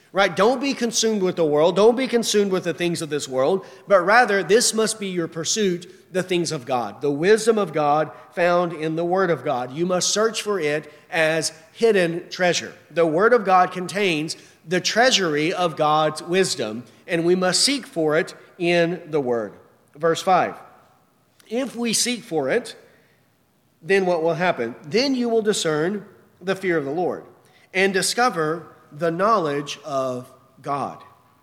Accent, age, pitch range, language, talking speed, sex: American, 40-59, 165-215 Hz, English, 170 wpm, male